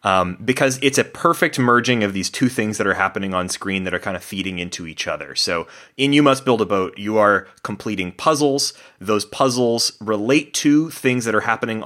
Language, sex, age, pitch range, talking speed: English, male, 30-49, 95-120 Hz, 215 wpm